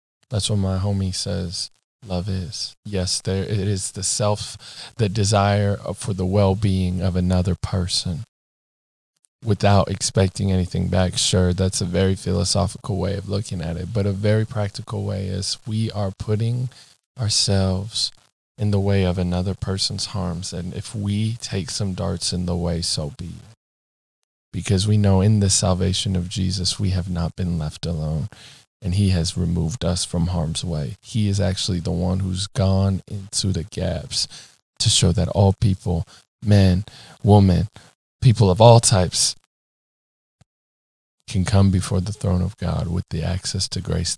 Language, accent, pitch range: English, American, 90-105 Hz